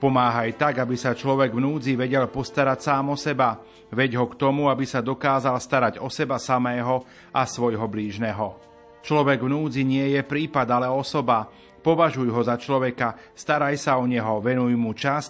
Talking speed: 175 wpm